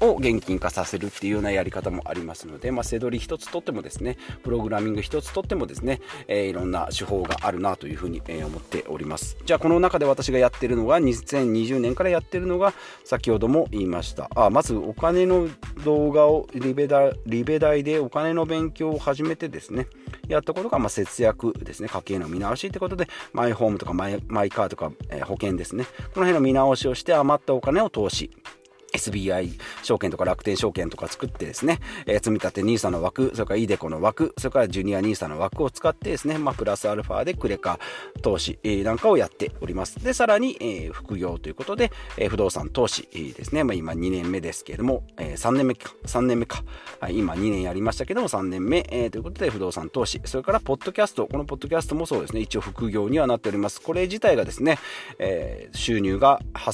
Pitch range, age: 100-155 Hz, 40-59